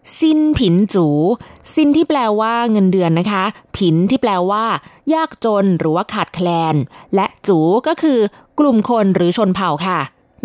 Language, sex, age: Thai, female, 20-39